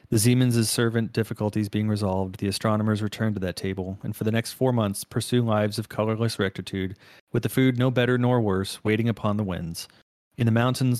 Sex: male